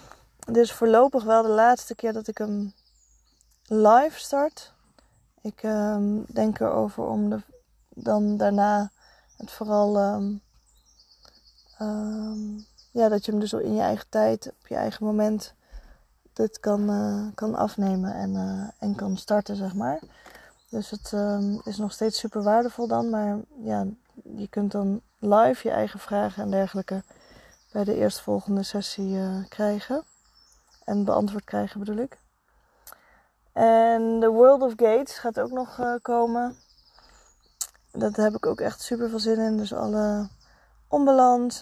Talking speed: 140 wpm